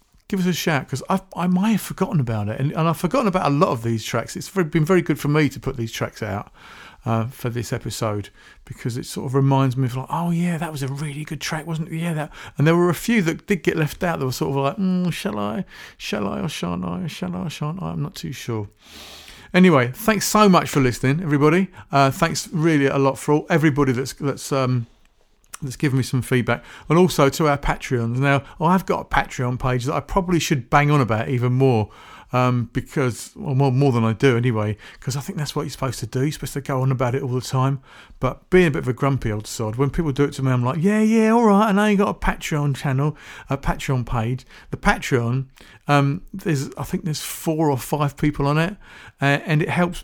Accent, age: British, 40-59